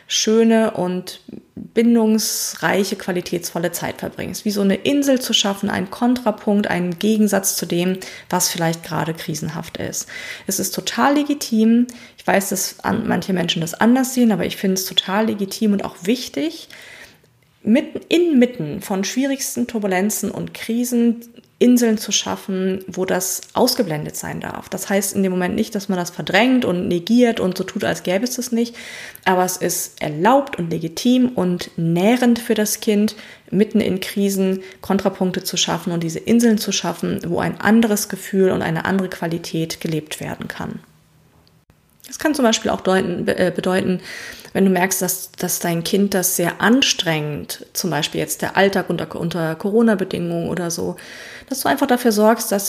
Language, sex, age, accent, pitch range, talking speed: German, female, 20-39, German, 185-230 Hz, 165 wpm